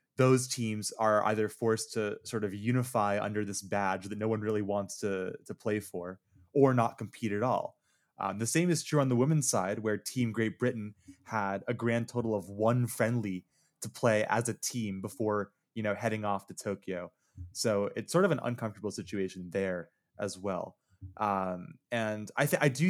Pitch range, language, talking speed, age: 100-115 Hz, English, 195 wpm, 20-39